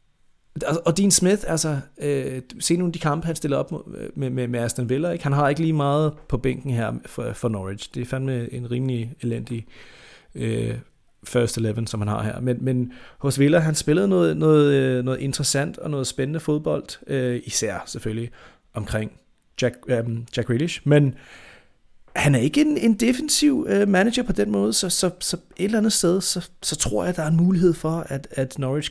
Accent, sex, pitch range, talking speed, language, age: native, male, 125-155 Hz, 195 wpm, Danish, 30-49